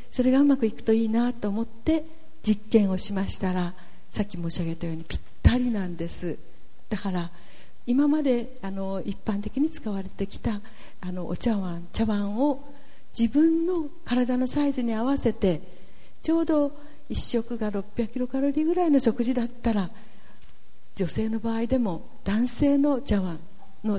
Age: 50-69